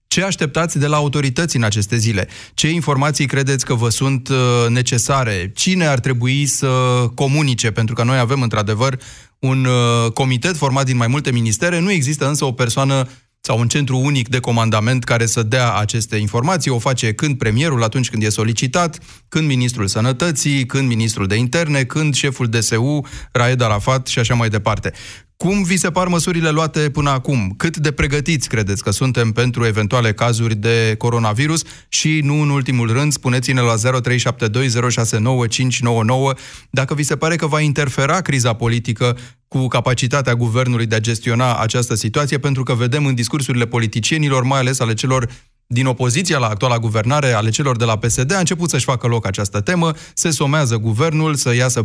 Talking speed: 170 wpm